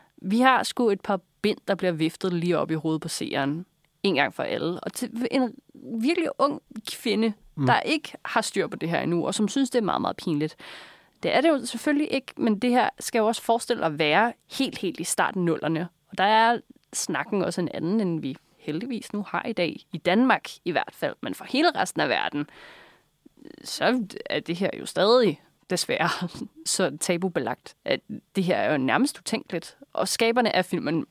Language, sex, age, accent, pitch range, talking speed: Danish, female, 30-49, native, 170-240 Hz, 205 wpm